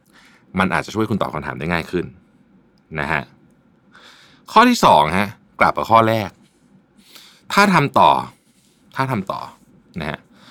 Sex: male